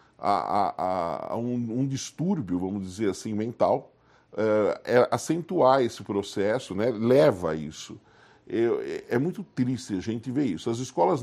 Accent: Brazilian